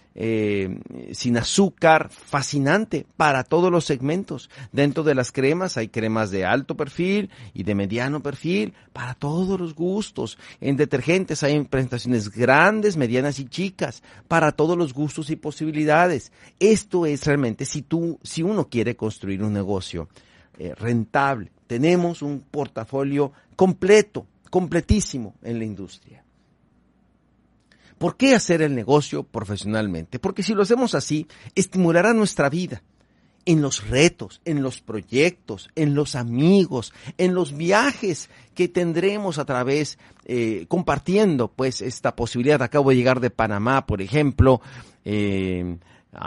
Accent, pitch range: Mexican, 120-170 Hz